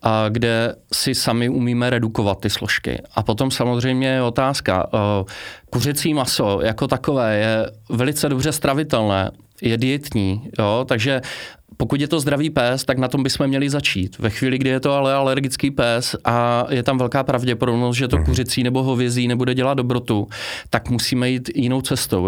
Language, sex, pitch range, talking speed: Slovak, male, 115-130 Hz, 170 wpm